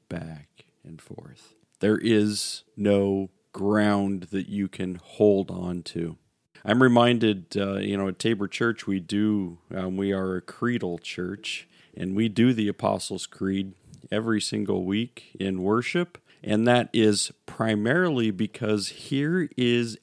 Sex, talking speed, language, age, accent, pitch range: male, 140 wpm, English, 40-59, American, 100-120 Hz